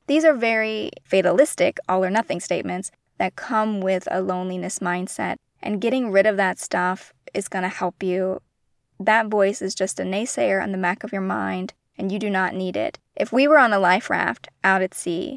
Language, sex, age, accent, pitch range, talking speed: English, female, 20-39, American, 185-235 Hz, 200 wpm